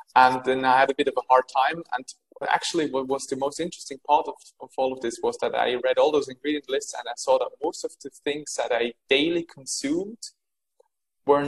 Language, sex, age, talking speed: English, male, 20-39, 230 wpm